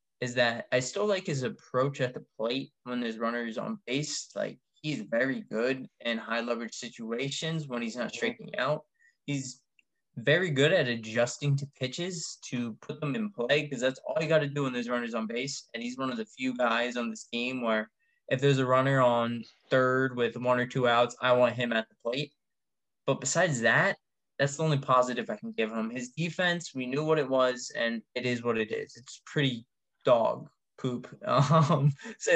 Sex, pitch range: male, 120-150 Hz